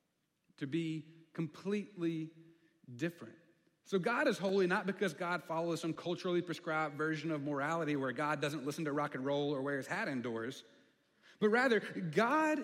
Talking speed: 160 wpm